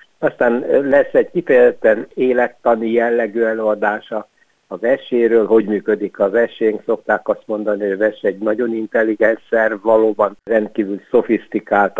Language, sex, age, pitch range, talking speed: Hungarian, male, 60-79, 105-120 Hz, 120 wpm